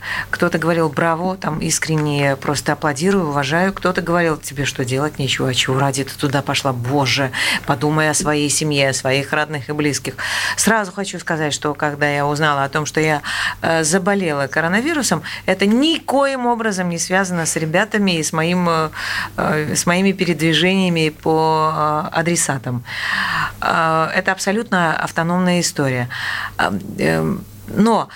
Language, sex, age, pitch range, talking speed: Russian, female, 40-59, 150-200 Hz, 130 wpm